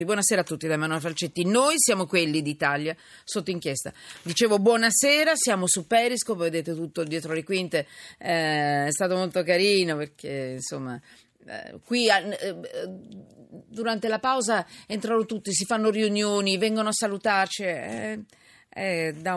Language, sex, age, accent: Italian, female, 40-59, native